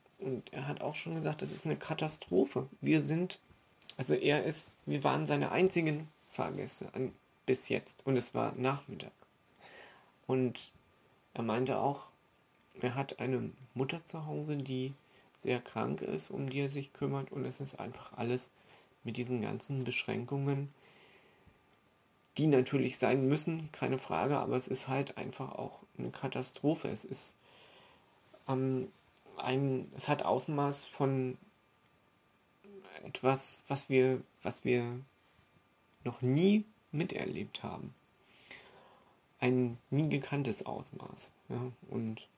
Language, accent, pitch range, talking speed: German, German, 125-145 Hz, 130 wpm